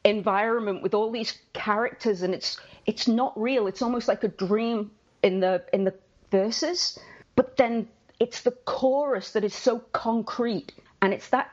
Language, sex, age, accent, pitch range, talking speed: English, female, 40-59, British, 195-240 Hz, 165 wpm